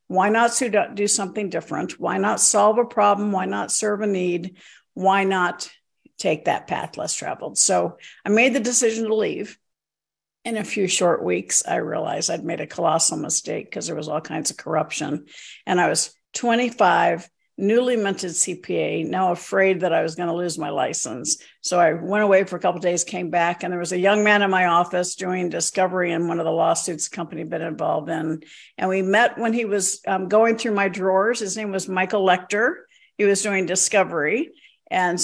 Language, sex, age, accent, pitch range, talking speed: English, female, 50-69, American, 180-215 Hz, 205 wpm